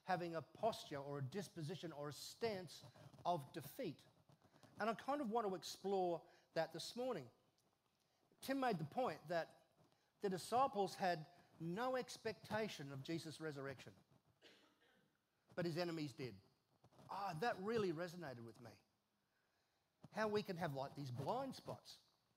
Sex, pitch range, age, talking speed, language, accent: male, 145-190 Hz, 40-59, 140 wpm, English, Australian